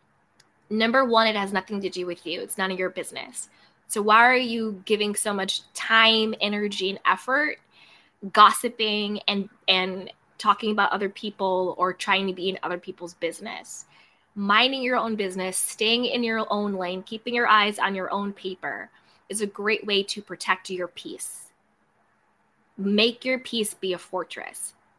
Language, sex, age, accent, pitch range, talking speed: English, female, 20-39, American, 190-225 Hz, 170 wpm